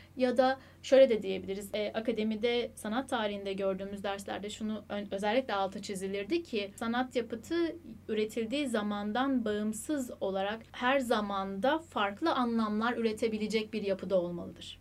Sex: female